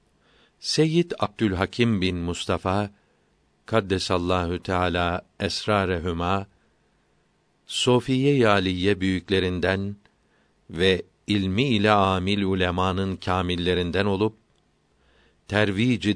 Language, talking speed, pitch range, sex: Turkish, 70 wpm, 95-110 Hz, male